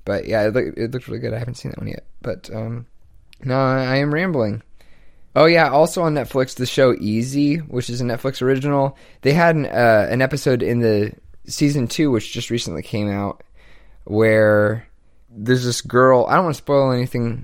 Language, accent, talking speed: English, American, 195 wpm